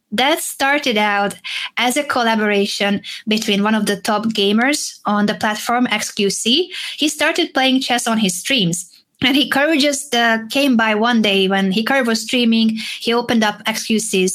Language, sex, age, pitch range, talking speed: English, female, 20-39, 205-265 Hz, 165 wpm